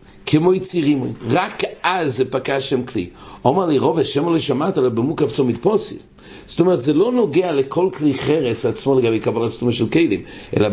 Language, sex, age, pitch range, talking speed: English, male, 60-79, 115-155 Hz, 175 wpm